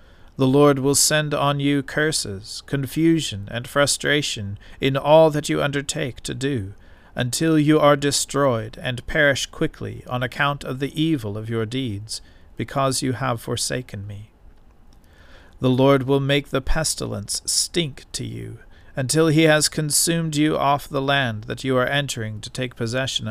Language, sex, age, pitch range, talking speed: English, male, 40-59, 105-140 Hz, 155 wpm